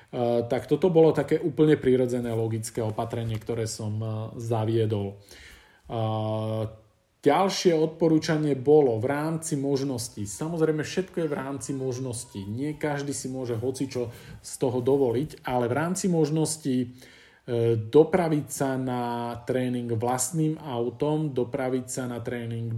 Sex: male